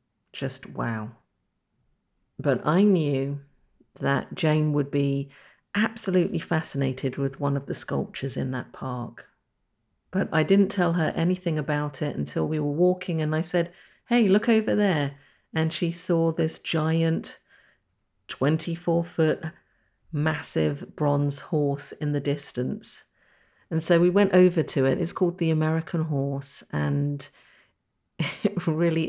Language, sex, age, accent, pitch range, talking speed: English, female, 50-69, British, 140-170 Hz, 135 wpm